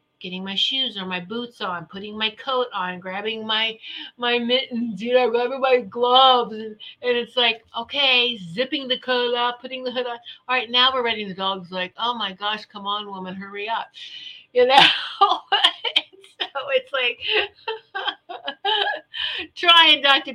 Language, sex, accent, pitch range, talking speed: English, female, American, 190-255 Hz, 170 wpm